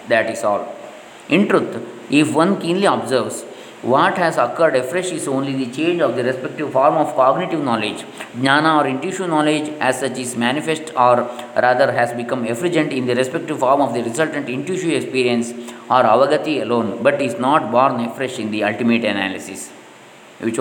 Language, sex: English, male